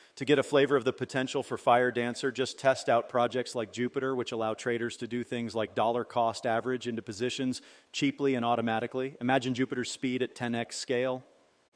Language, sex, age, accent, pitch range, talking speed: English, male, 40-59, American, 110-125 Hz, 185 wpm